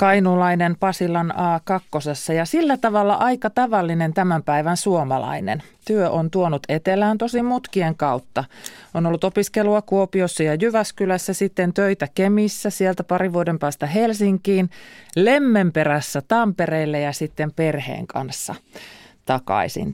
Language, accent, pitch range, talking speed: Finnish, native, 155-215 Hz, 115 wpm